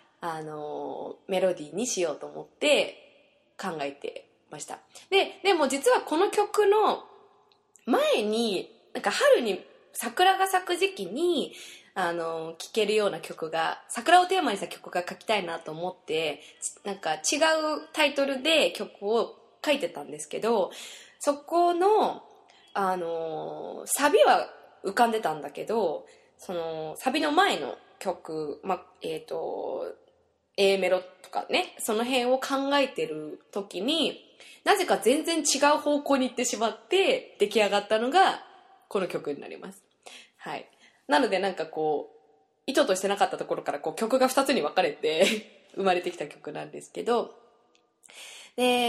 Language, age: Japanese, 20-39